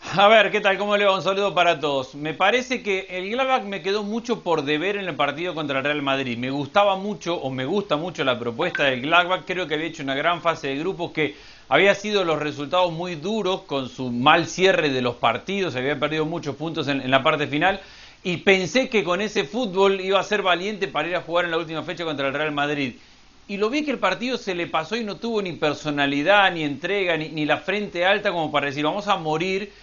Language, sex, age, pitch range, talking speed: Spanish, male, 40-59, 150-200 Hz, 240 wpm